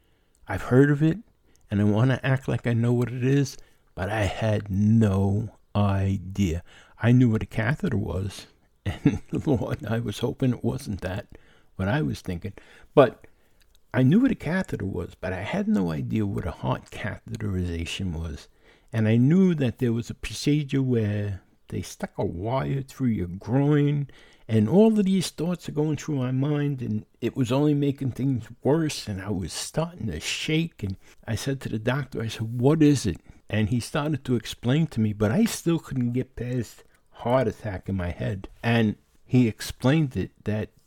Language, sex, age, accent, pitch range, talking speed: English, male, 60-79, American, 100-135 Hz, 185 wpm